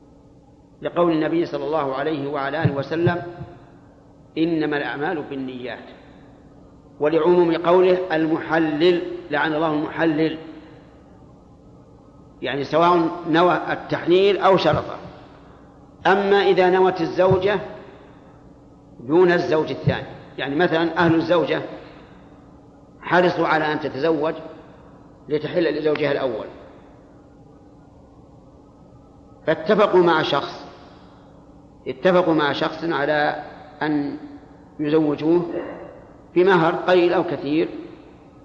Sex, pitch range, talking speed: male, 145-175 Hz, 85 wpm